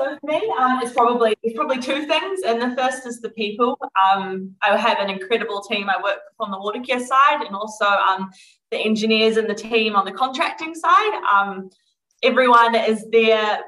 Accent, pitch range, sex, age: Australian, 205-250 Hz, female, 20-39